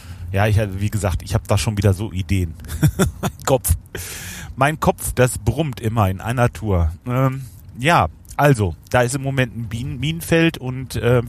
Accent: German